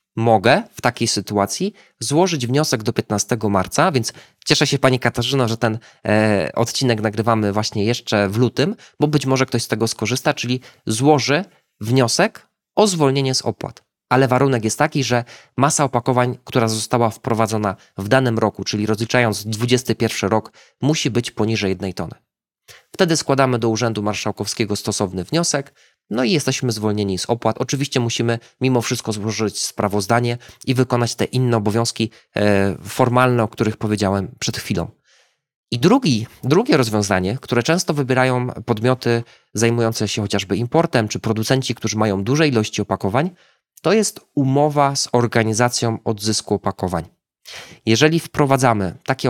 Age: 20-39